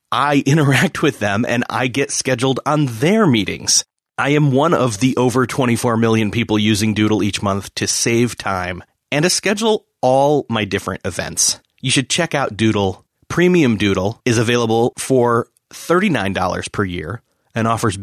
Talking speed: 165 wpm